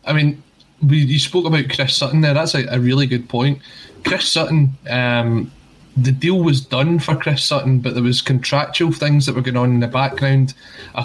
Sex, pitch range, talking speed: male, 120-135 Hz, 200 wpm